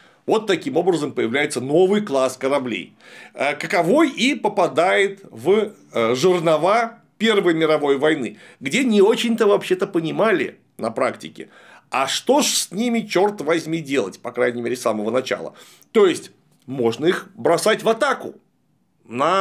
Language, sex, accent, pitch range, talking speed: Russian, male, native, 165-230 Hz, 135 wpm